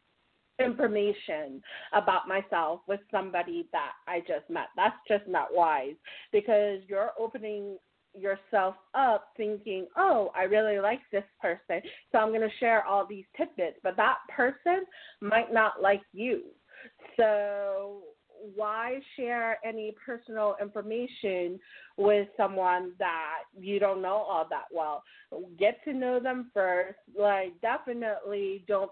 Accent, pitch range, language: American, 195-235 Hz, English